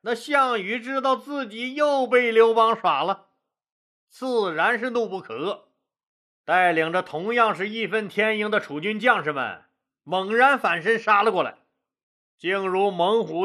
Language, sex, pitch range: Chinese, male, 195-250 Hz